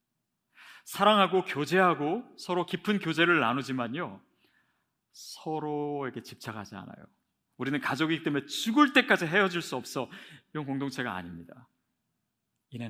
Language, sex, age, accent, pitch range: Korean, male, 40-59, native, 130-185 Hz